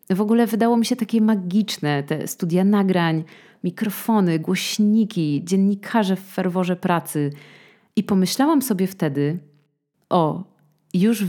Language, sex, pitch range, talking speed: Polish, female, 160-210 Hz, 115 wpm